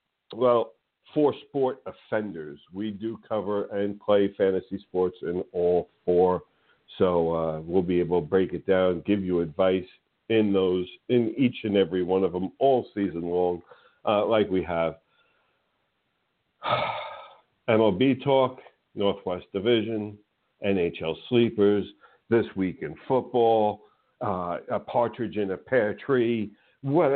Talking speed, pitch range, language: 135 wpm, 95-120 Hz, English